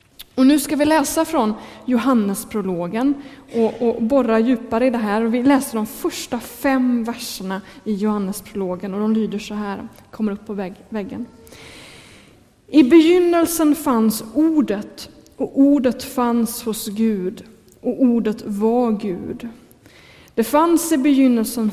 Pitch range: 215-265 Hz